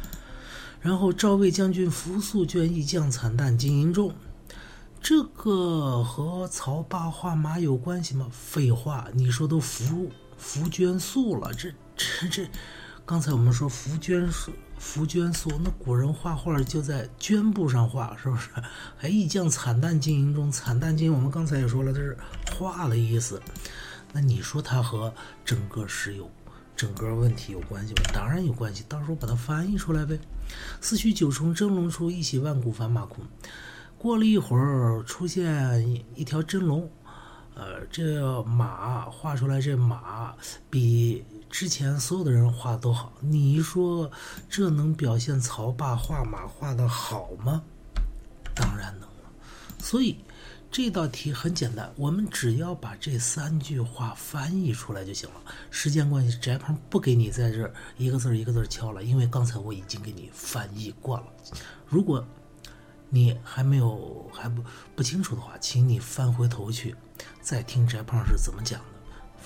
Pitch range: 120-160 Hz